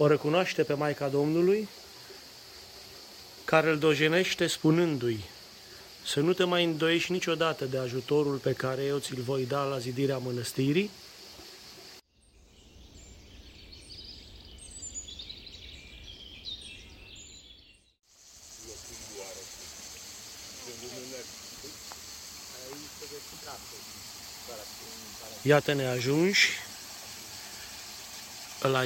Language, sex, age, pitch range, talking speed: Romanian, male, 30-49, 115-165 Hz, 60 wpm